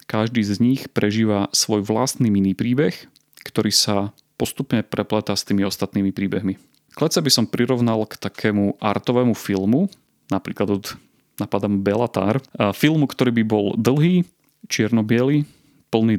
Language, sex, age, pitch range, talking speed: Slovak, male, 30-49, 100-125 Hz, 135 wpm